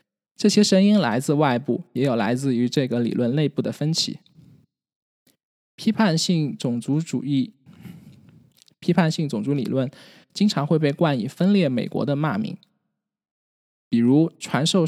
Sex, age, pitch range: male, 20-39, 135-180 Hz